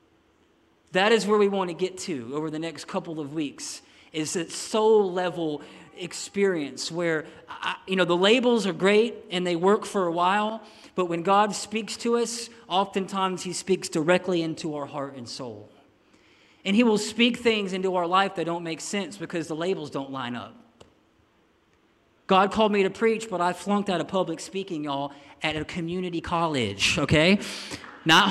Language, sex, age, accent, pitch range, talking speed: English, male, 40-59, American, 180-225 Hz, 175 wpm